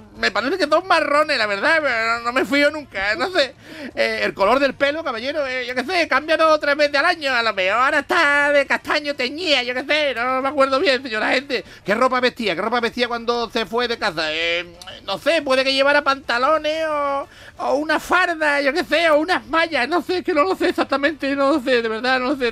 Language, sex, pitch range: Spanish, male, 265-330 Hz